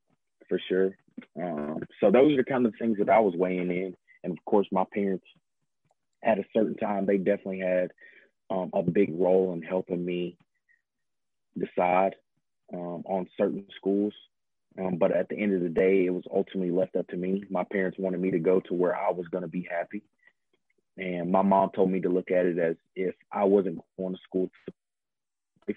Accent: American